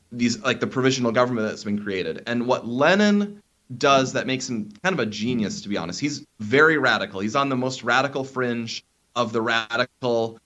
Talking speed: 195 wpm